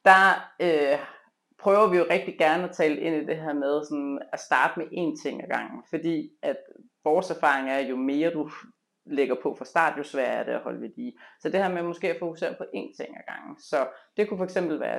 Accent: native